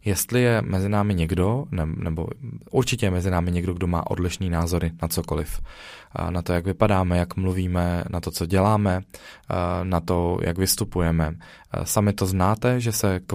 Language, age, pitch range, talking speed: Czech, 20-39, 95-105 Hz, 170 wpm